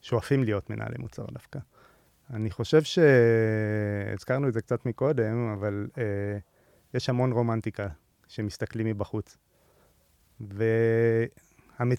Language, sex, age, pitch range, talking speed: English, male, 30-49, 110-130 Hz, 95 wpm